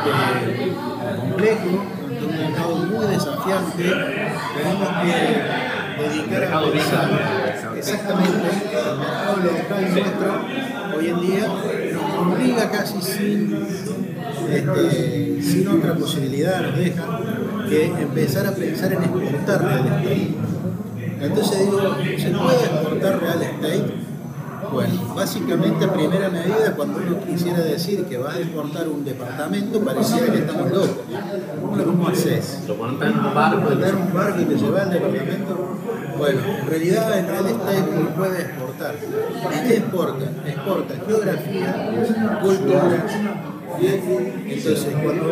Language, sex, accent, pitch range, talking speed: Spanish, male, Argentinian, 160-200 Hz, 125 wpm